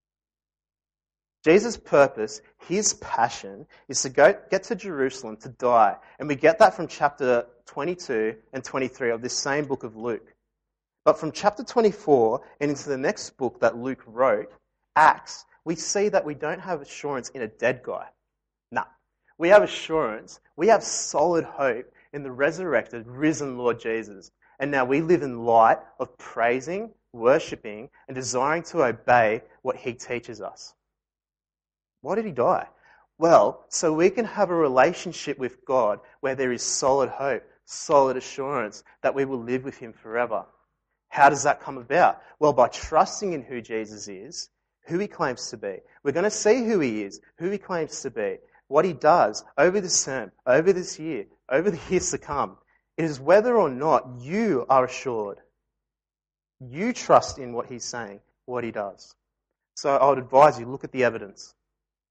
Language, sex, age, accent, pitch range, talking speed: English, male, 30-49, Australian, 125-175 Hz, 175 wpm